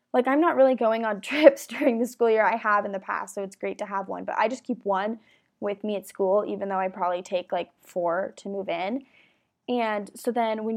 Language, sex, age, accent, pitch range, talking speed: English, female, 10-29, American, 205-245 Hz, 250 wpm